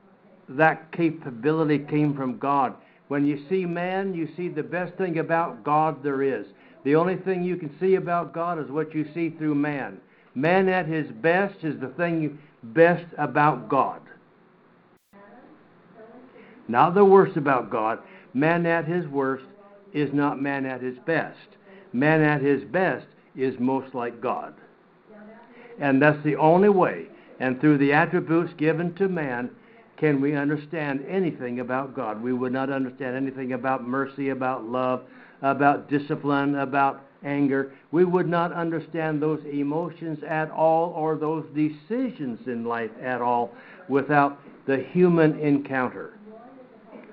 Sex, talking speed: male, 145 wpm